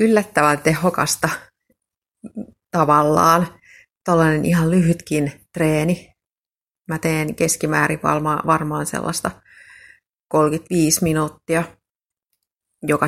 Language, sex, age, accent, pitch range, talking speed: Finnish, female, 30-49, native, 150-175 Hz, 70 wpm